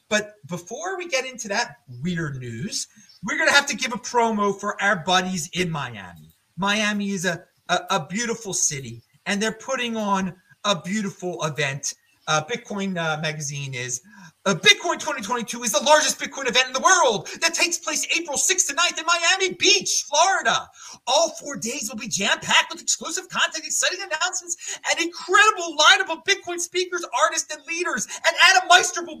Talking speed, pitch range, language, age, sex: 175 wpm, 205-330 Hz, English, 30-49, male